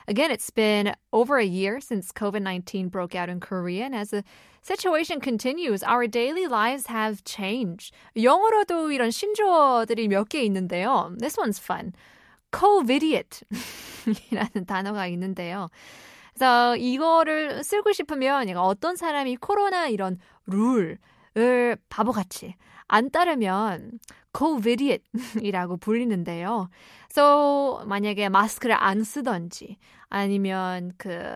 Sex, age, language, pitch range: female, 20-39, Korean, 195-275 Hz